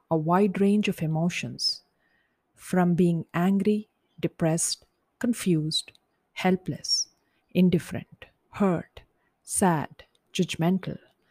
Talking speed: 80 wpm